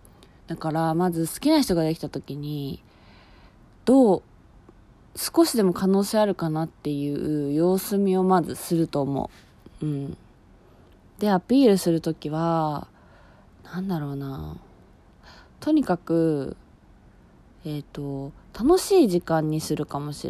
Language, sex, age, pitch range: Japanese, female, 20-39, 145-185 Hz